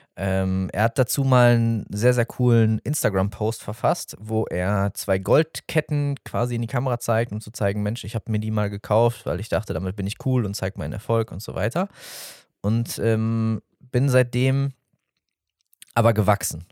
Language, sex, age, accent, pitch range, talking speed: German, male, 20-39, German, 110-130 Hz, 180 wpm